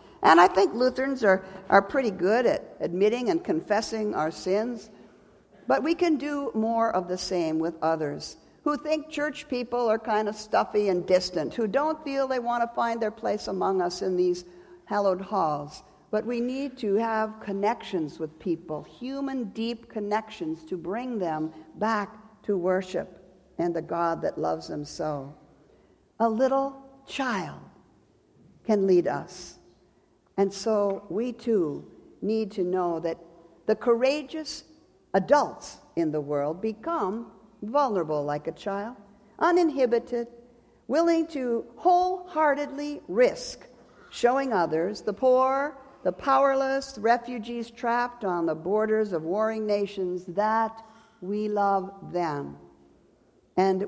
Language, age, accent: English, 50-69, American